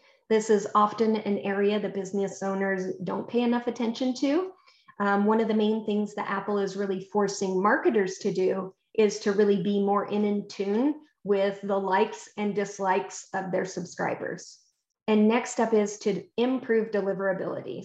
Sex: female